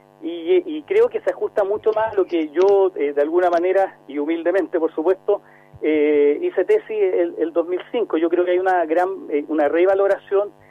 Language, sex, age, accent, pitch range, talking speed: Spanish, male, 40-59, Argentinian, 145-200 Hz, 190 wpm